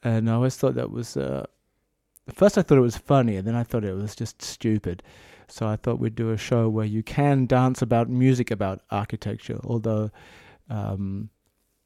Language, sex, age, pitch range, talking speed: German, male, 30-49, 110-130 Hz, 190 wpm